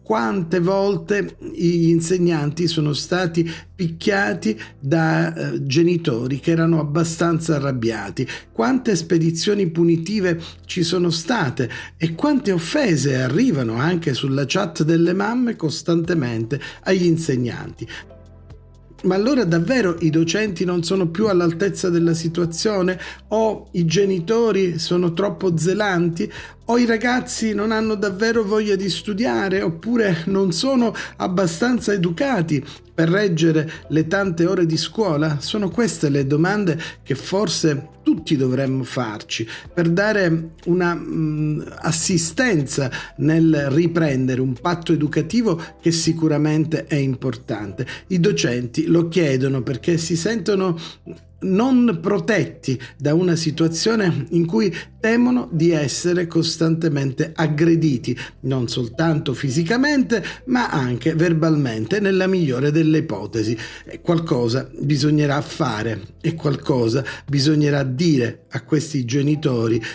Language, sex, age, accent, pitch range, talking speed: Italian, male, 40-59, native, 145-185 Hz, 110 wpm